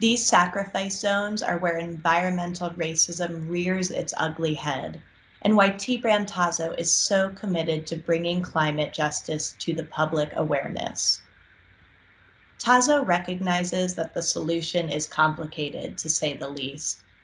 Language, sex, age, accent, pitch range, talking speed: English, female, 20-39, American, 155-185 Hz, 130 wpm